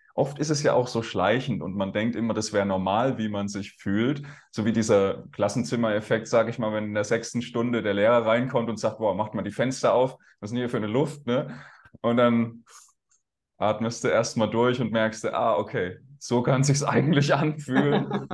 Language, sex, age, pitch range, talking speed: German, male, 20-39, 110-125 Hz, 215 wpm